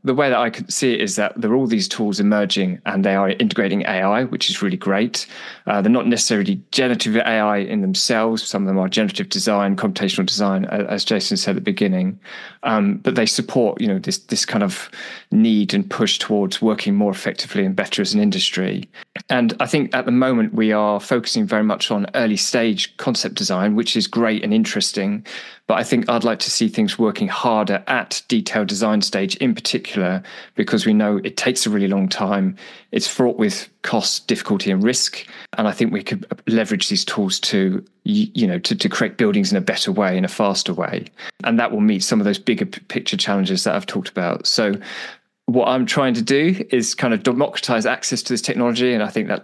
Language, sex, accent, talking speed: English, male, British, 215 wpm